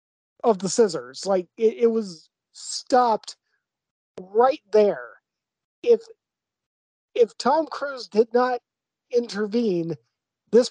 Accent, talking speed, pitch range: American, 100 wpm, 185-240 Hz